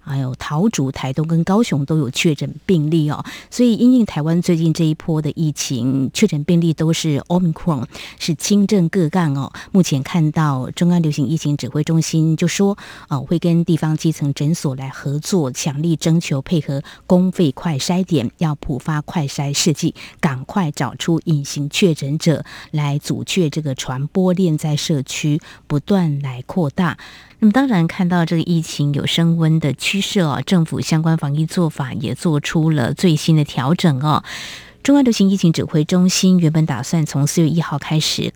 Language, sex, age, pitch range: Chinese, female, 20-39, 145-180 Hz